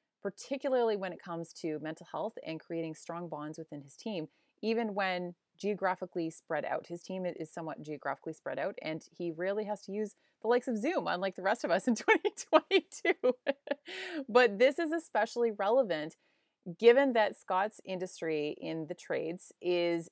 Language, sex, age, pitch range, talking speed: English, female, 30-49, 165-225 Hz, 165 wpm